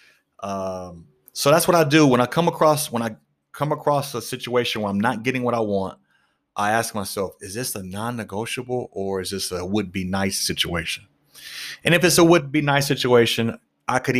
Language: English